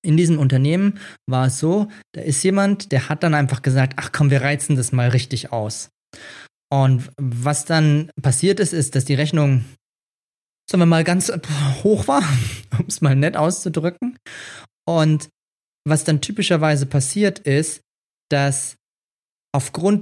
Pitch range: 130-160 Hz